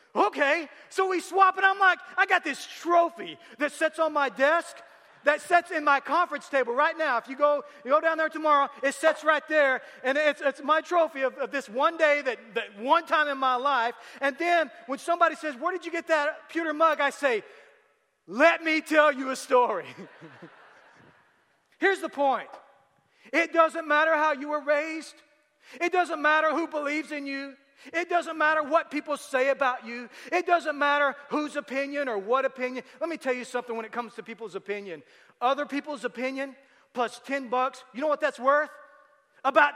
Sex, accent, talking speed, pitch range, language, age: male, American, 195 wpm, 265-320 Hz, English, 40-59